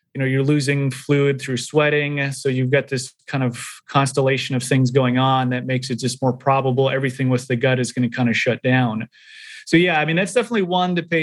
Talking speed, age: 235 wpm, 30-49